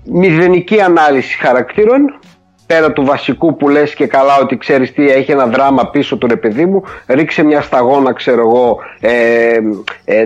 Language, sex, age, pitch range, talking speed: Greek, male, 30-49, 145-210 Hz, 165 wpm